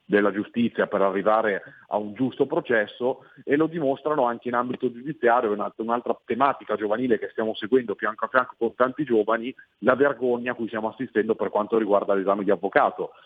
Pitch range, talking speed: 105-130 Hz, 175 wpm